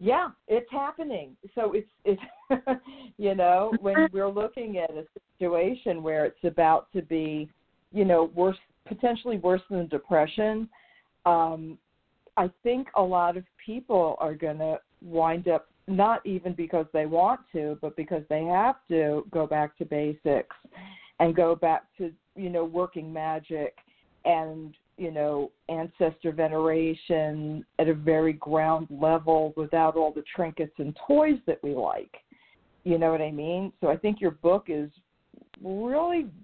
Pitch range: 160-200 Hz